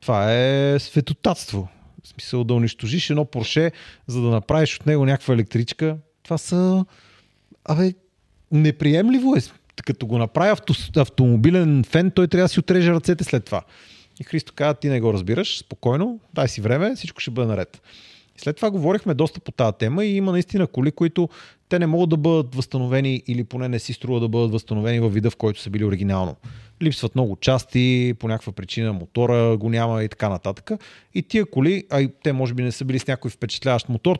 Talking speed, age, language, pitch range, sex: 195 wpm, 40-59, Bulgarian, 115-155 Hz, male